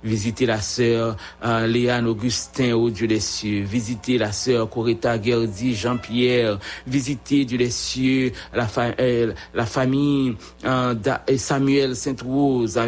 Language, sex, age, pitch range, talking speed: English, male, 60-79, 115-130 Hz, 125 wpm